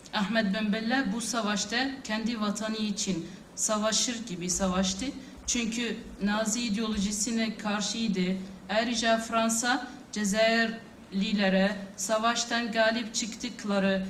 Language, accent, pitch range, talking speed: Turkish, native, 200-235 Hz, 85 wpm